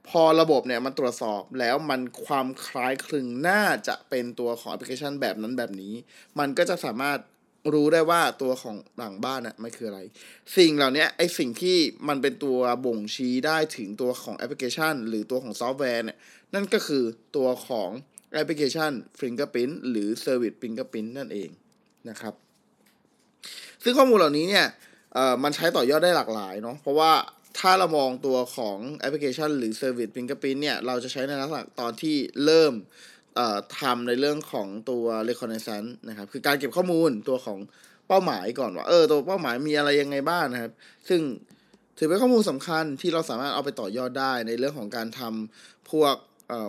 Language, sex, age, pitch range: Thai, male, 20-39, 120-155 Hz